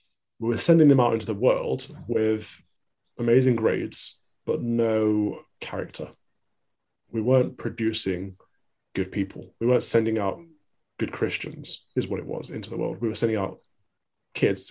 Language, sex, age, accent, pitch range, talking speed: English, male, 20-39, British, 100-120 Hz, 150 wpm